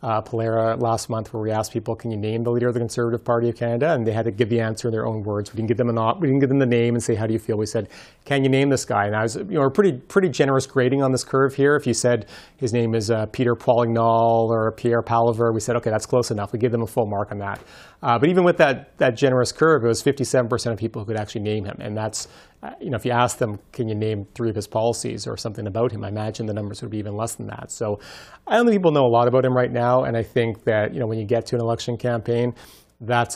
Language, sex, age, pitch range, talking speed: English, male, 30-49, 110-125 Hz, 300 wpm